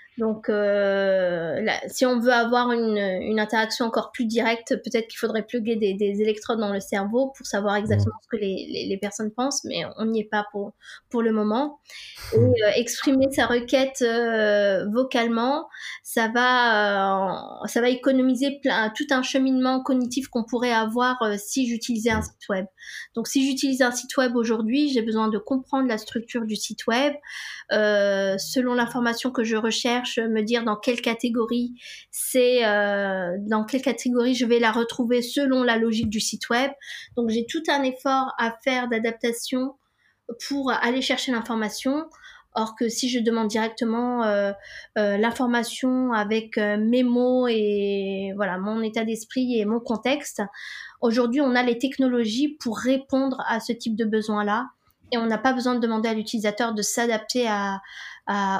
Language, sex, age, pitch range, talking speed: French, female, 20-39, 215-255 Hz, 175 wpm